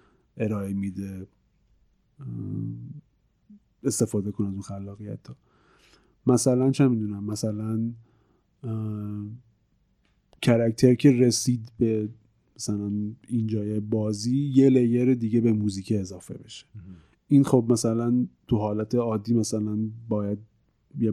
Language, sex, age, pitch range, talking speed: Persian, male, 30-49, 105-120 Hz, 100 wpm